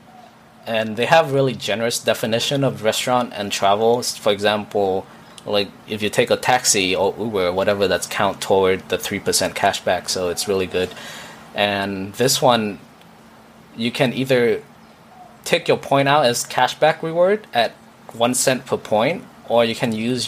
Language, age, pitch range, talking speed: Vietnamese, 20-39, 100-125 Hz, 160 wpm